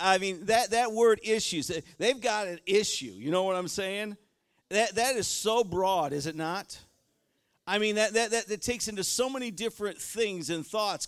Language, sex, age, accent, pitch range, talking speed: English, male, 50-69, American, 170-230 Hz, 200 wpm